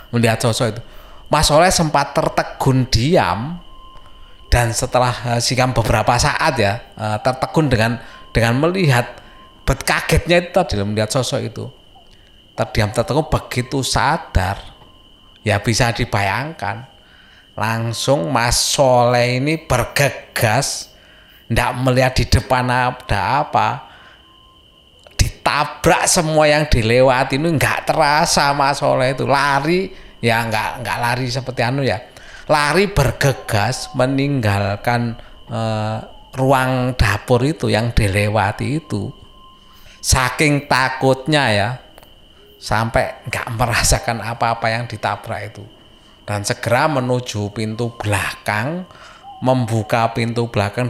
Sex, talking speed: male, 105 wpm